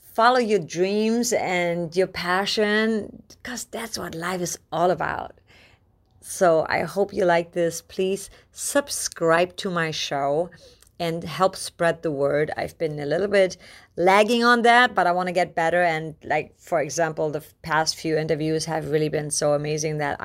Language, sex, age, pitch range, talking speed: English, female, 30-49, 155-195 Hz, 170 wpm